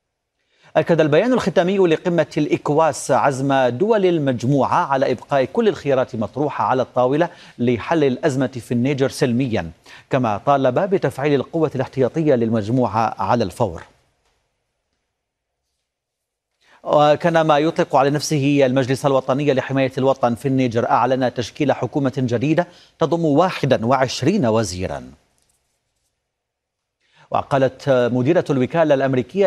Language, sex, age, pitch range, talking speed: Arabic, male, 40-59, 120-155 Hz, 100 wpm